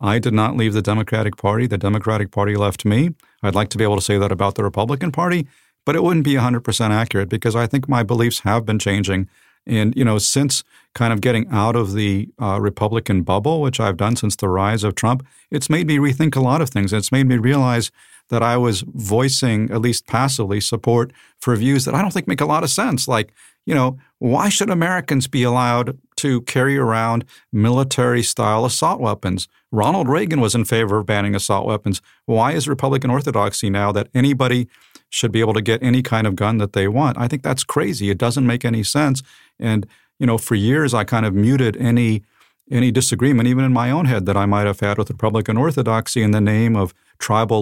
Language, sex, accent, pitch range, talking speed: English, male, American, 105-130 Hz, 215 wpm